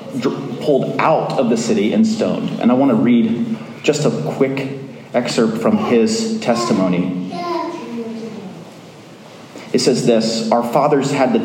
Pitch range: 135-220 Hz